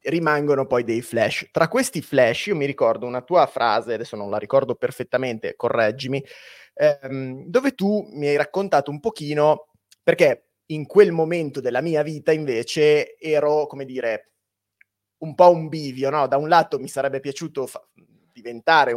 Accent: native